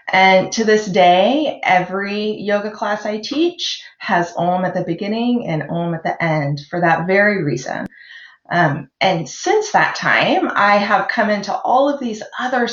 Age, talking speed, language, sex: 30-49, 170 wpm, English, female